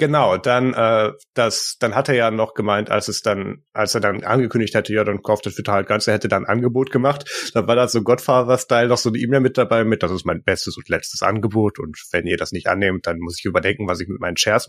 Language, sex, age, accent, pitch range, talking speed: German, male, 30-49, German, 95-115 Hz, 265 wpm